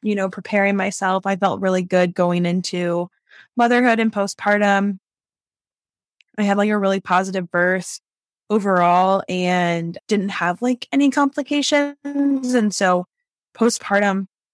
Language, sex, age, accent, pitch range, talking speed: English, female, 10-29, American, 180-225 Hz, 125 wpm